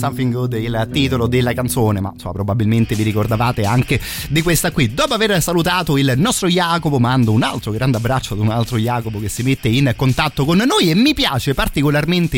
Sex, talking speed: male, 195 wpm